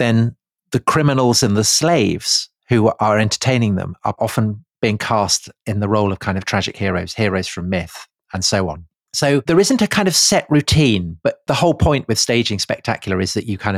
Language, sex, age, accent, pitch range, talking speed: English, male, 40-59, British, 105-135 Hz, 205 wpm